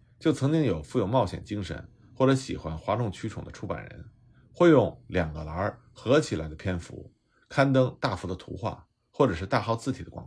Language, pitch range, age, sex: Chinese, 95-140 Hz, 50-69, male